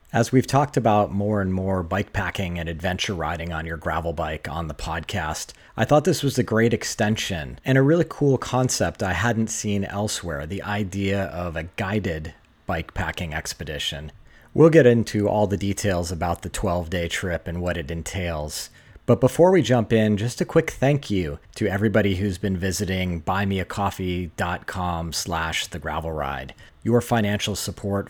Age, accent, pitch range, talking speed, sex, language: 40-59, American, 85-110 Hz, 160 wpm, male, English